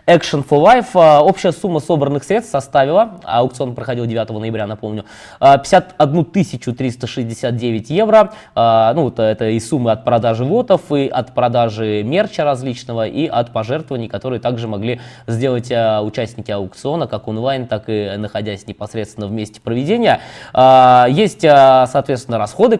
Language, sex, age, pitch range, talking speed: Russian, male, 20-39, 115-145 Hz, 130 wpm